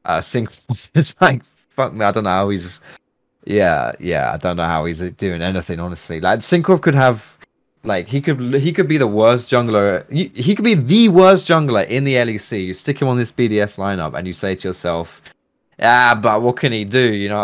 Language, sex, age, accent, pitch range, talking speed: English, male, 20-39, British, 90-120 Hz, 225 wpm